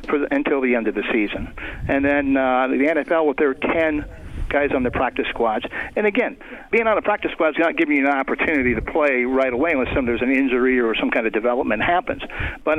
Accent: American